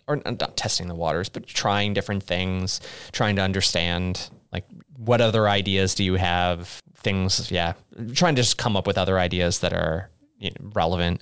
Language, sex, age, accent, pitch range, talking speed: English, male, 20-39, American, 95-120 Hz, 170 wpm